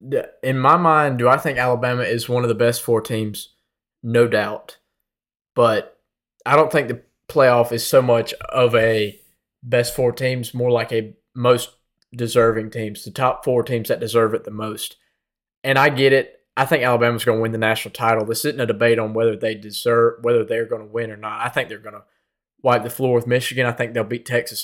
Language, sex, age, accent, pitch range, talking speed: English, male, 20-39, American, 115-135 Hz, 215 wpm